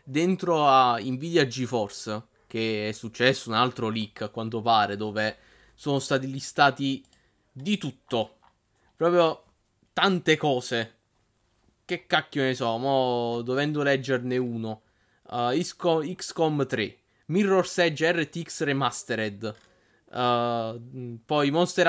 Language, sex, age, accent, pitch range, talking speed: Italian, male, 20-39, native, 115-140 Hz, 110 wpm